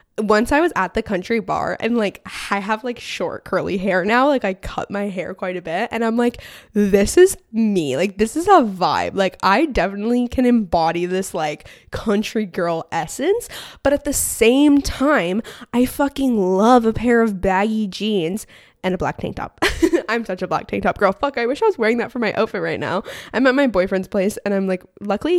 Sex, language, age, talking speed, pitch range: female, English, 10-29, 215 wpm, 190-245 Hz